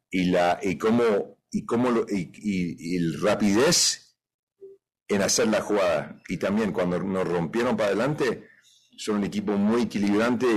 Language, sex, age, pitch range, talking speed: English, male, 50-69, 90-125 Hz, 155 wpm